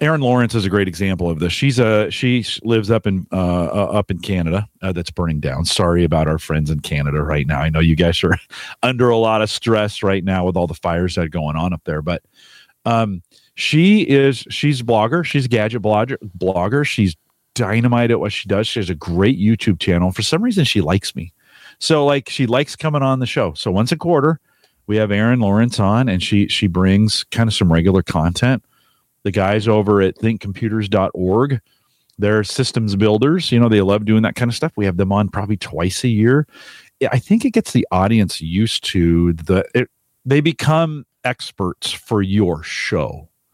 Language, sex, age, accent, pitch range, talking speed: English, male, 40-59, American, 90-125 Hz, 205 wpm